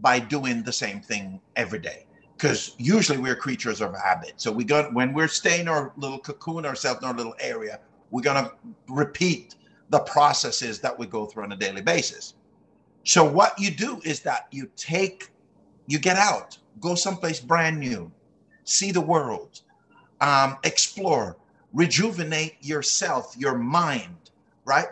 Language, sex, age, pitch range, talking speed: English, male, 50-69, 125-170 Hz, 155 wpm